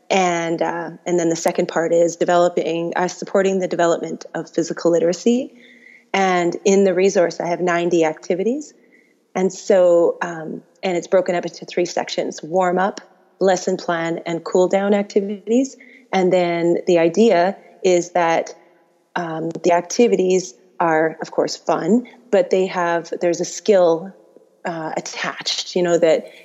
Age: 30-49